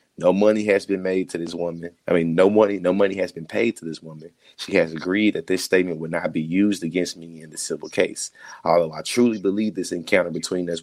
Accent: American